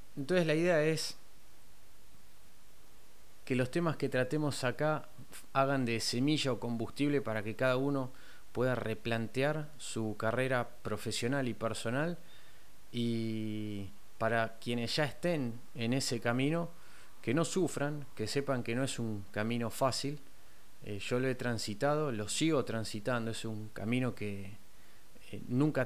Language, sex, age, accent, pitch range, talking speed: Spanish, male, 30-49, Argentinian, 110-140 Hz, 135 wpm